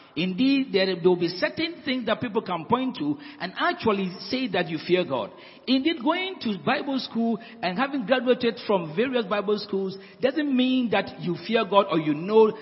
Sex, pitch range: male, 210-290 Hz